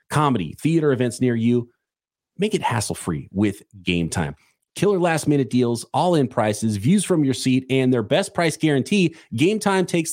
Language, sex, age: English, male, 30-49